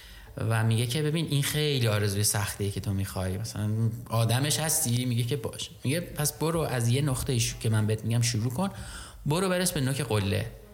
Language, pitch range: Persian, 110-150 Hz